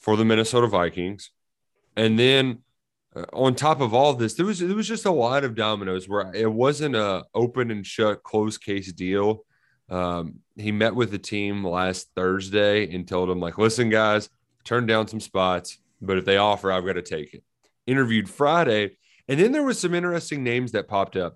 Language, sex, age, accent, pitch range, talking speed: English, male, 30-49, American, 95-120 Hz, 190 wpm